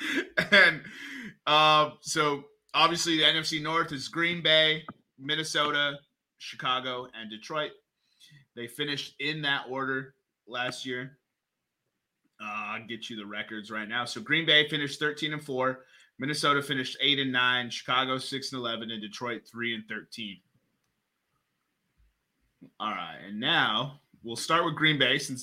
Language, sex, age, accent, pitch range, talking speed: English, male, 30-49, American, 125-155 Hz, 140 wpm